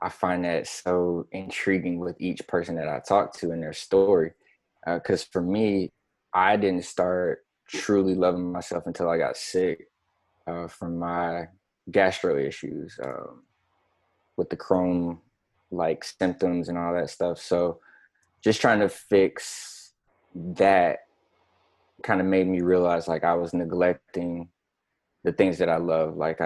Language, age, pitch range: English, 20-39, 85-95 Hz